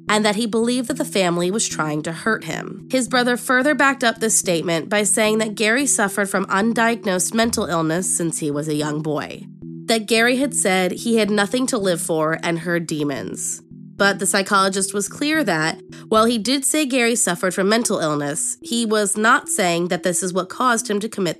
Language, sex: English, female